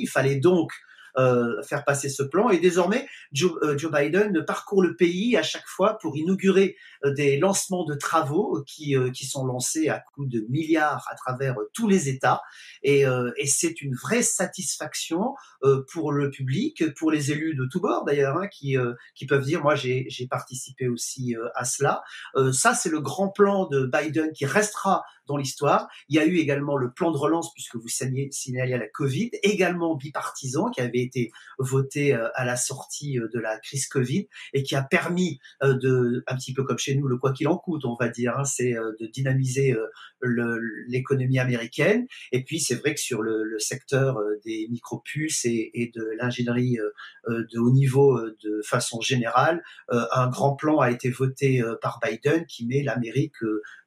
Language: French